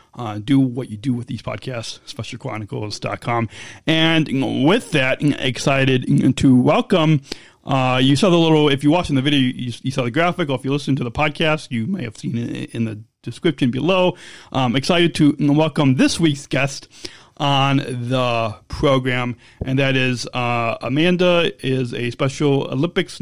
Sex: male